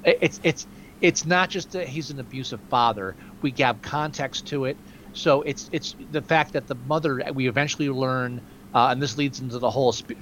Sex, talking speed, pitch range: male, 200 wpm, 115-145 Hz